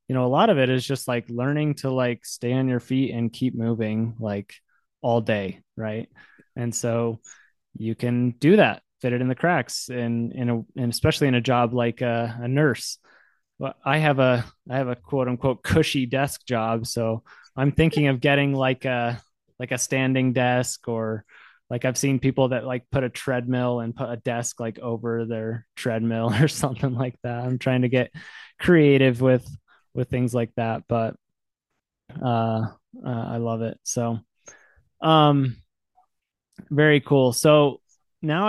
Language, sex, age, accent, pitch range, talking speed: English, male, 20-39, American, 120-140 Hz, 175 wpm